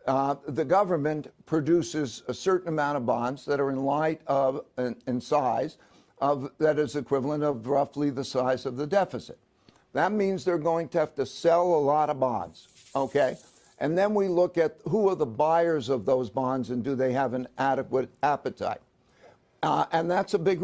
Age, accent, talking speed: 60-79, American, 185 wpm